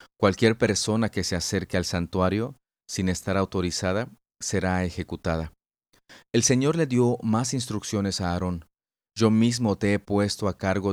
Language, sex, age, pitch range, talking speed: Spanish, male, 40-59, 95-110 Hz, 150 wpm